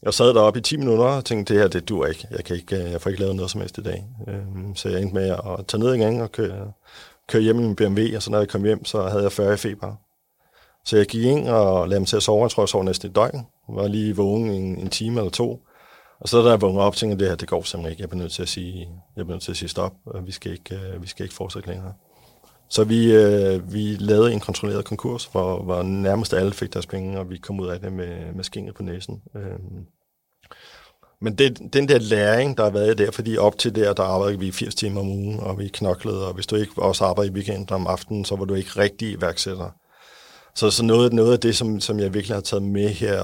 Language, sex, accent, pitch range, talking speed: Danish, male, native, 95-110 Hz, 260 wpm